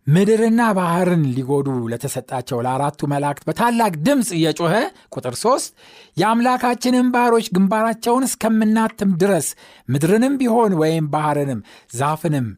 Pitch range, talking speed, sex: 135-205 Hz, 100 wpm, male